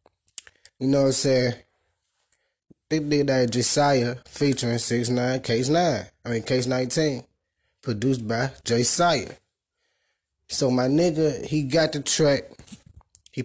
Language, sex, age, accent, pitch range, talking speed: English, male, 20-39, American, 120-150 Hz, 130 wpm